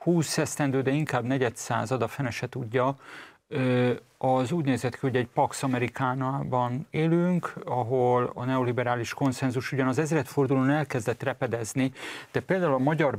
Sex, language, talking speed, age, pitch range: male, Hungarian, 135 wpm, 40-59, 125-145 Hz